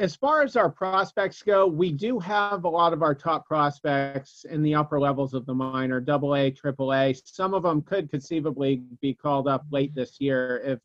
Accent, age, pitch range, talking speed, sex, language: American, 40-59, 135-170 Hz, 200 wpm, male, English